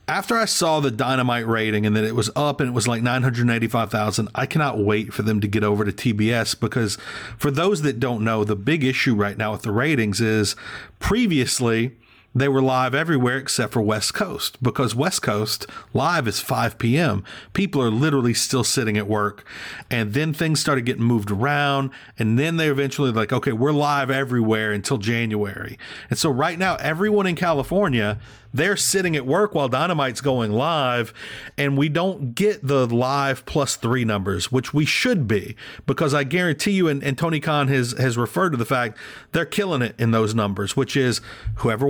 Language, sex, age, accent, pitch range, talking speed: English, male, 40-59, American, 110-140 Hz, 195 wpm